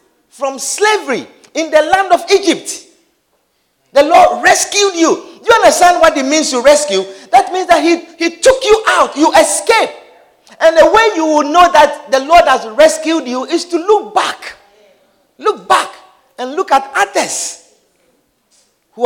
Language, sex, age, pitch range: English, male, 50-69, 230-340 Hz